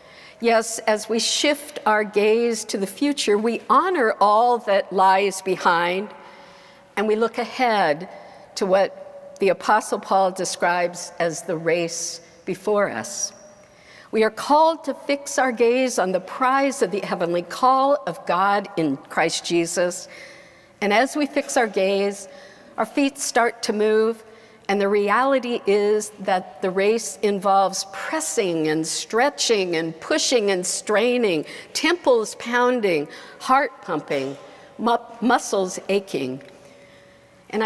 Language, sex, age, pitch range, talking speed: English, female, 60-79, 185-245 Hz, 130 wpm